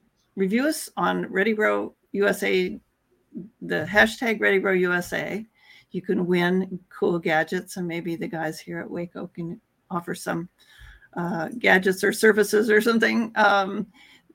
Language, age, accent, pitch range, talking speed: English, 50-69, American, 165-205 Hz, 135 wpm